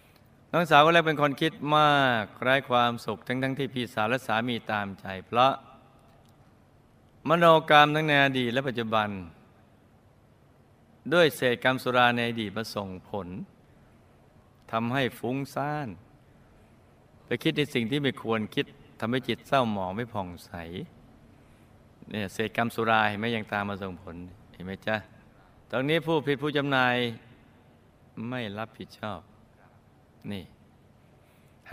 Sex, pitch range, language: male, 110-140 Hz, Thai